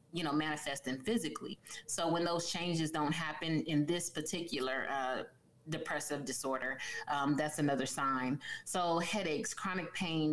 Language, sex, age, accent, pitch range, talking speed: English, female, 30-49, American, 145-175 Hz, 140 wpm